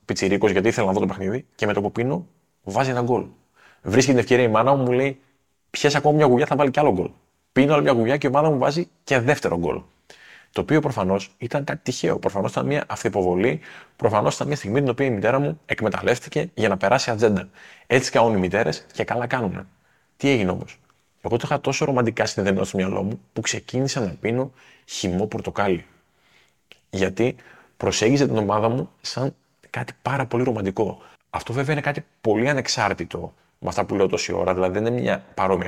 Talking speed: 200 wpm